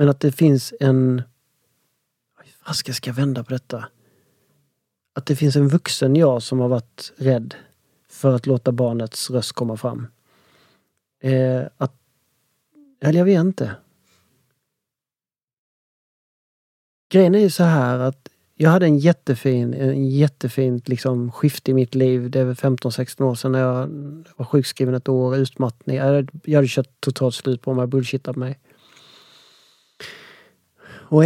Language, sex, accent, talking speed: Swedish, male, native, 140 wpm